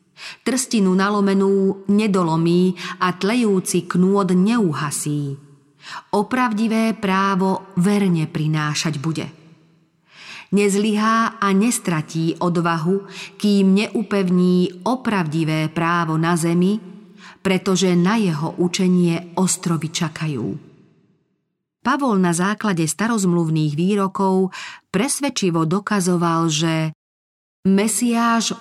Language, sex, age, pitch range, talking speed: Slovak, female, 40-59, 165-195 Hz, 80 wpm